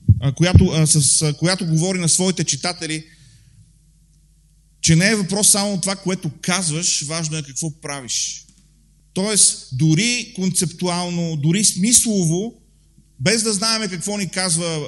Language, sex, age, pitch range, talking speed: Bulgarian, male, 30-49, 150-190 Hz, 130 wpm